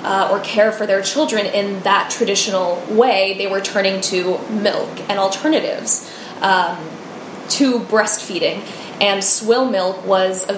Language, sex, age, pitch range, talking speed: English, female, 10-29, 195-230 Hz, 140 wpm